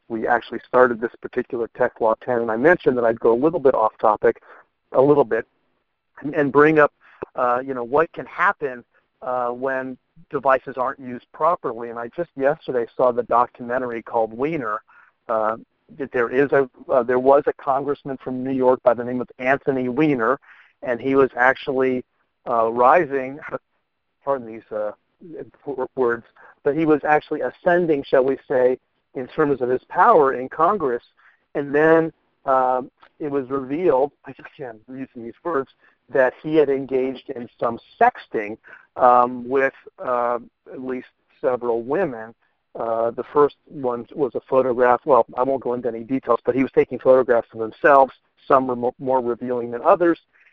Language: English